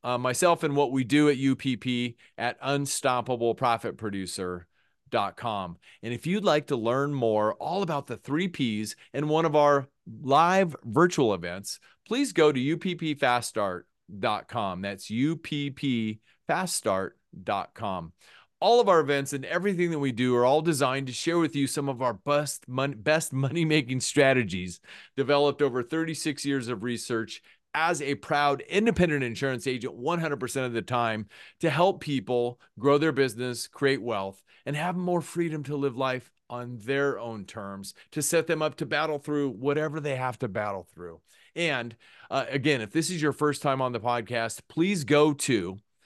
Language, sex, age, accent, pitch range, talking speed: English, male, 30-49, American, 120-155 Hz, 160 wpm